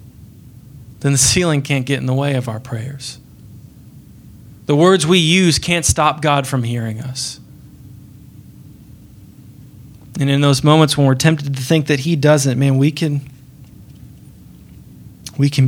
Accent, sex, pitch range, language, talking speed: American, male, 125-150 Hz, English, 140 wpm